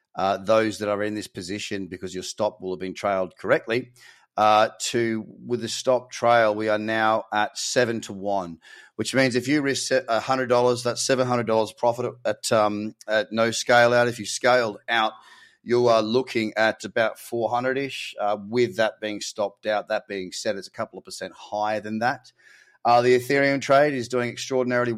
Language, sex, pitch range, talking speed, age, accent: English, male, 105-125 Hz, 185 wpm, 30-49, Australian